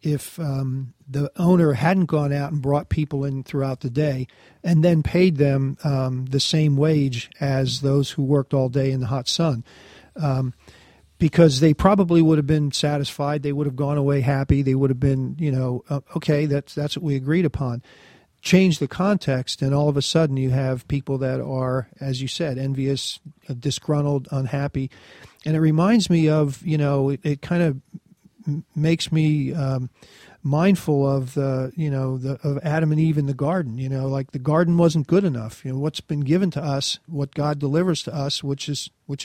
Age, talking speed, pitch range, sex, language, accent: 50-69, 195 wpm, 135-155 Hz, male, English, American